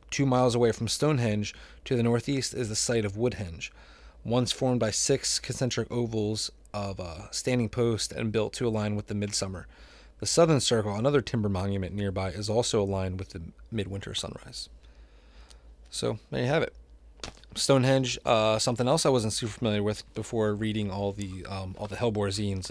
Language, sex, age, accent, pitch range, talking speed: English, male, 20-39, American, 95-125 Hz, 175 wpm